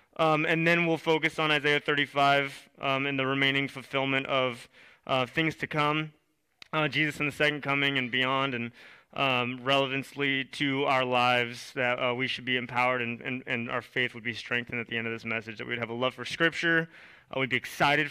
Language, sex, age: English, male, 20-39